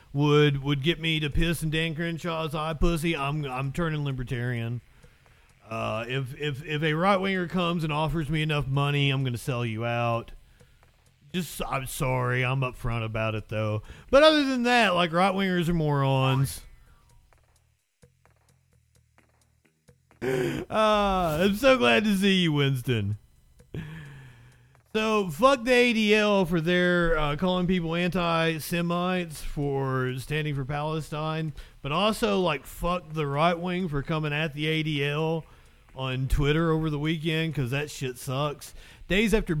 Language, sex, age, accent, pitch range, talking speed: English, male, 40-59, American, 130-180 Hz, 145 wpm